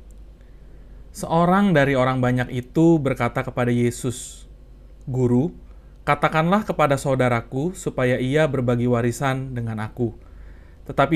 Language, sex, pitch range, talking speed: Indonesian, male, 120-145 Hz, 100 wpm